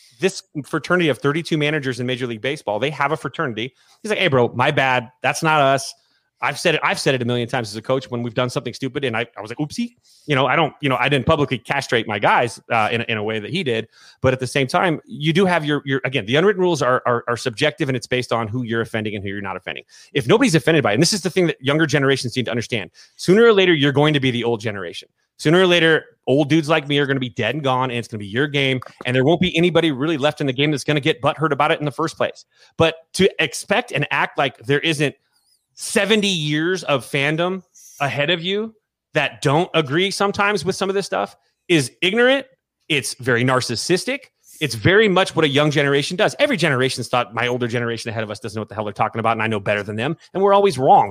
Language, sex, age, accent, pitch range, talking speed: English, male, 30-49, American, 120-160 Hz, 270 wpm